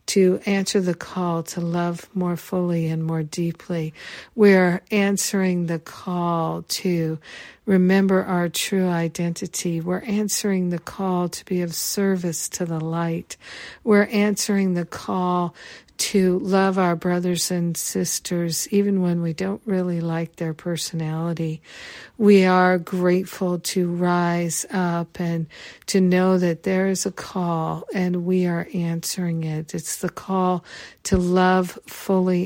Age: 50-69